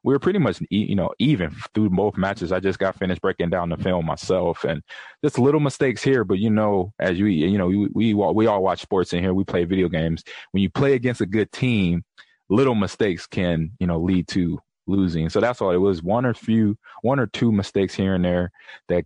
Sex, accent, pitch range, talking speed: male, American, 90-110 Hz, 235 wpm